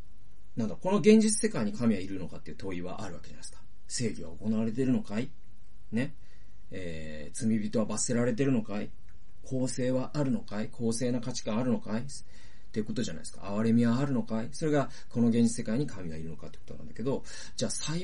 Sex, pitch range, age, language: male, 95-130 Hz, 40-59, Japanese